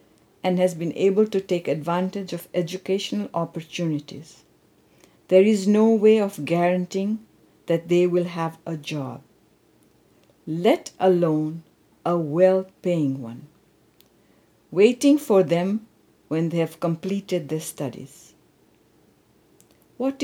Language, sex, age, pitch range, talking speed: English, female, 60-79, 160-215 Hz, 110 wpm